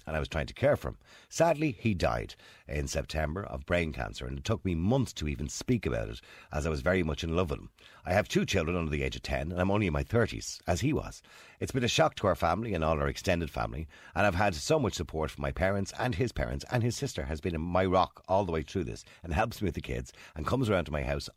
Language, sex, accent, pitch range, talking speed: English, male, Irish, 75-100 Hz, 285 wpm